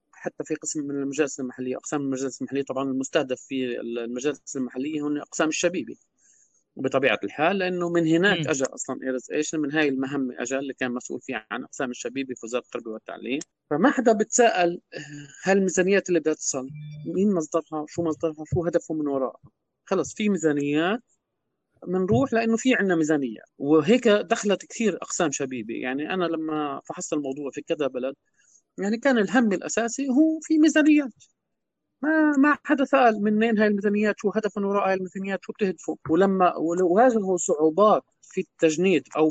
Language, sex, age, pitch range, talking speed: Arabic, male, 20-39, 145-205 Hz, 155 wpm